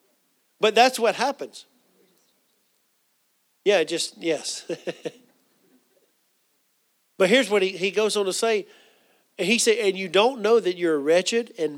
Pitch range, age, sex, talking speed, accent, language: 165-220 Hz, 50-69, male, 140 wpm, American, English